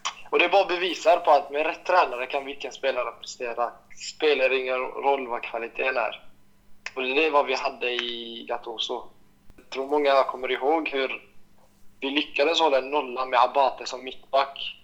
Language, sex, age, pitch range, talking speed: Swedish, male, 20-39, 120-145 Hz, 175 wpm